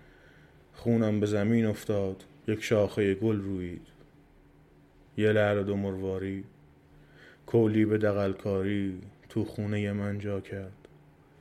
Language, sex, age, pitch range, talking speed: Persian, male, 20-39, 90-105 Hz, 110 wpm